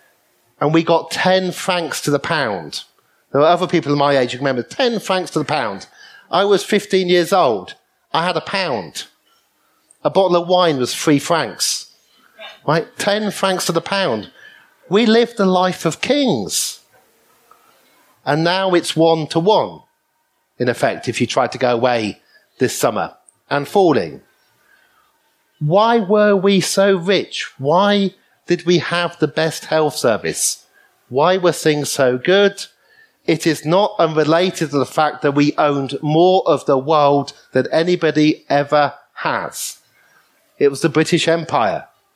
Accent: British